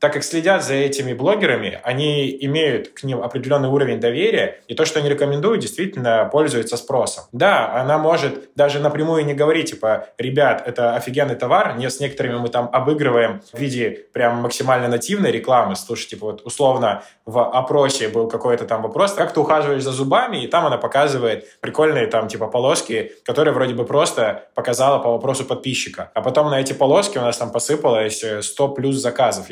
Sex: male